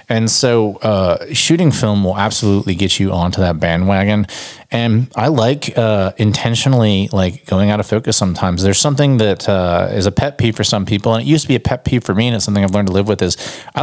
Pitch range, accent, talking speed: 95-120 Hz, American, 235 wpm